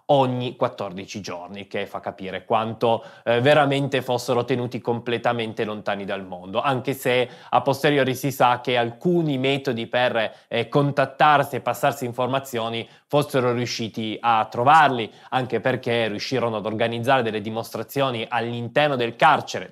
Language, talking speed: Italian, 135 wpm